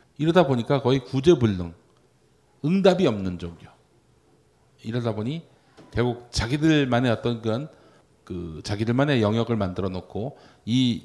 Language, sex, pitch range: Korean, male, 110-145 Hz